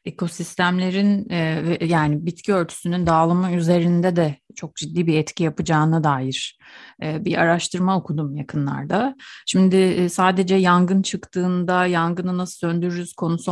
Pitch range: 160-200 Hz